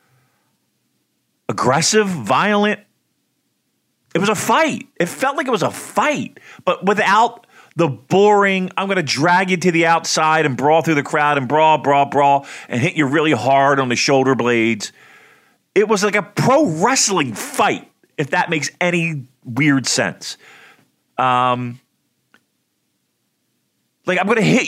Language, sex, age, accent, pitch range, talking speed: English, male, 40-59, American, 130-185 Hz, 150 wpm